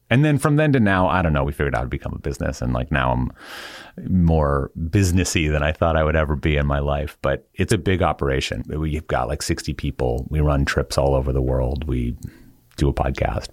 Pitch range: 75-95 Hz